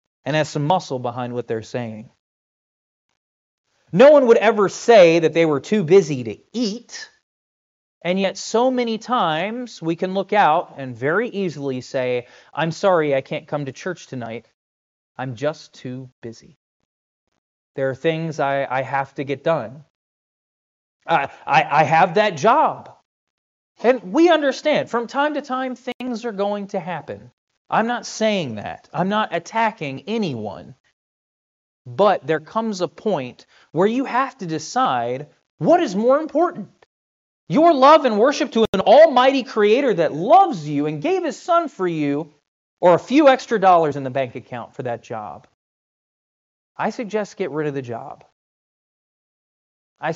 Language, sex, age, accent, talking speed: English, male, 30-49, American, 155 wpm